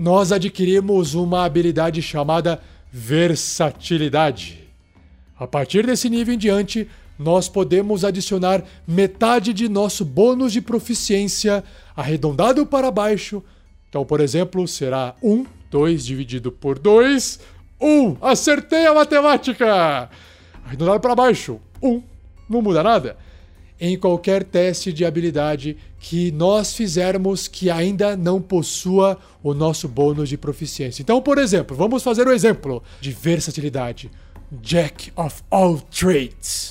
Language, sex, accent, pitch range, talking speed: Portuguese, male, Brazilian, 150-215 Hz, 125 wpm